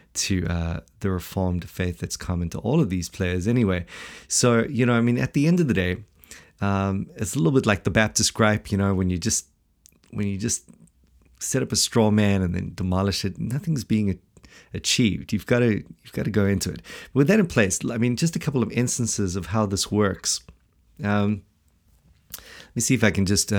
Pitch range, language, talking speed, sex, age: 95-110 Hz, English, 215 wpm, male, 30-49